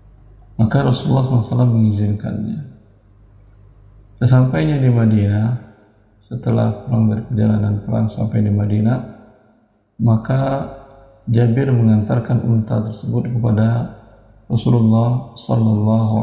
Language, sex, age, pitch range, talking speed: Indonesian, male, 50-69, 105-120 Hz, 85 wpm